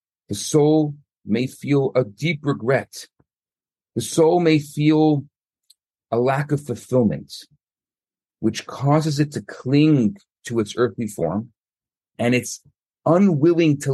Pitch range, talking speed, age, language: 115-150 Hz, 120 wpm, 40-59, English